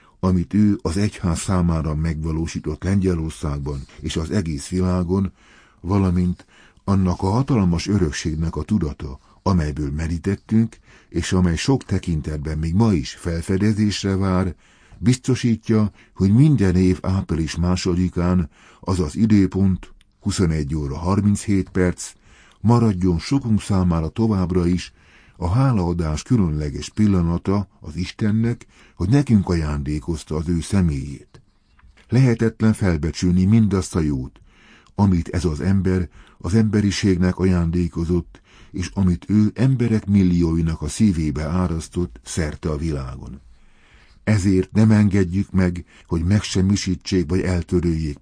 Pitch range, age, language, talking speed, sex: 80-100 Hz, 60-79, Hungarian, 110 wpm, male